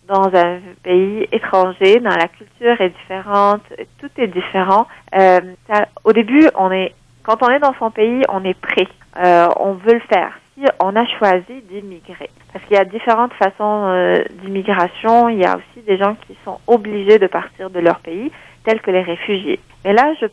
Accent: French